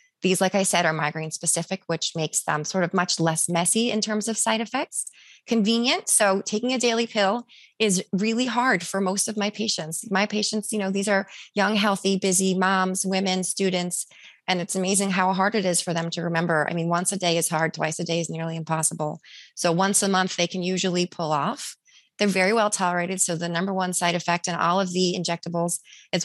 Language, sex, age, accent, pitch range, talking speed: English, female, 20-39, American, 165-195 Hz, 215 wpm